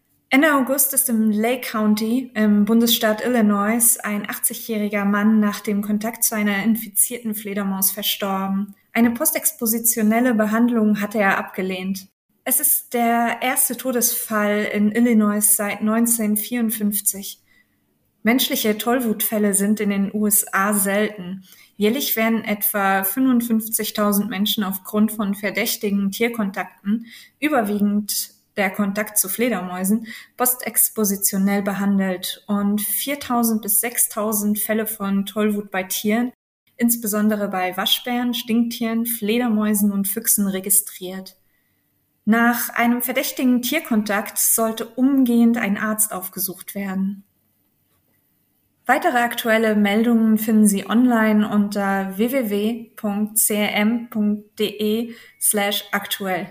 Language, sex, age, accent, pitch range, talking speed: German, female, 20-39, German, 205-235 Hz, 100 wpm